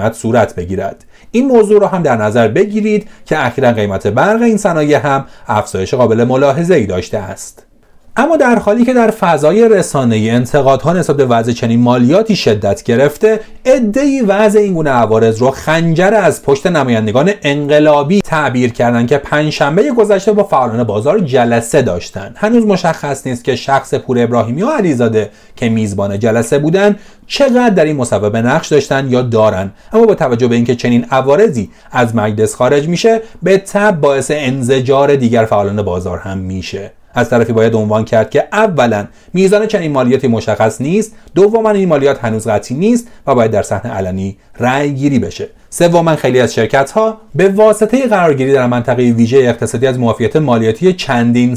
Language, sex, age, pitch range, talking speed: Persian, male, 40-59, 115-195 Hz, 160 wpm